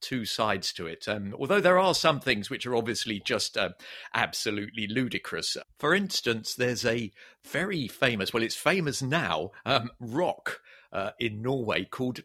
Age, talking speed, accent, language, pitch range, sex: 50-69, 160 wpm, British, English, 105-135 Hz, male